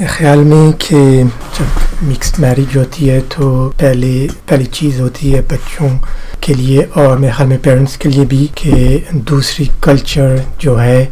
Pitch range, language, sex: 125-145 Hz, Hindi, male